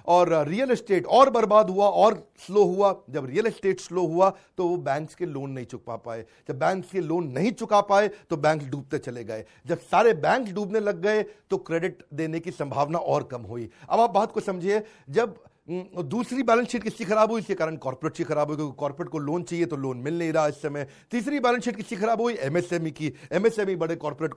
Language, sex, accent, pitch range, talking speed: Hindi, male, native, 155-215 Hz, 220 wpm